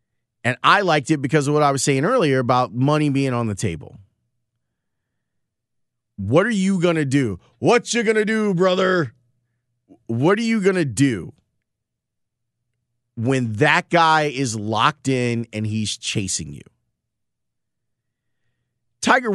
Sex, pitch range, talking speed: male, 120-155 Hz, 145 wpm